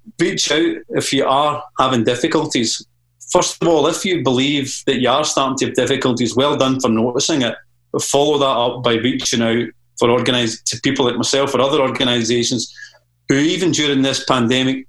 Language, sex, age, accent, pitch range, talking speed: English, male, 30-49, British, 120-140 Hz, 185 wpm